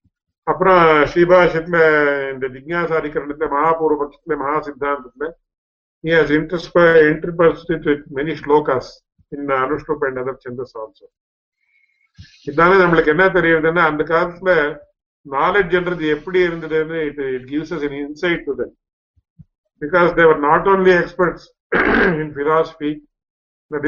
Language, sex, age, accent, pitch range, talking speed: English, male, 50-69, Indian, 145-170 Hz, 85 wpm